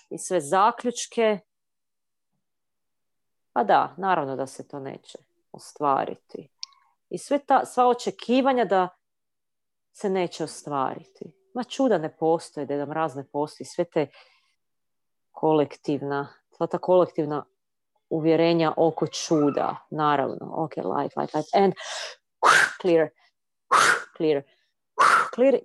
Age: 40-59